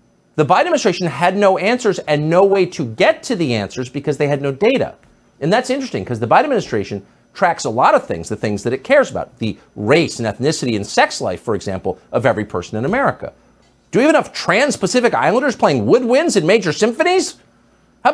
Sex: male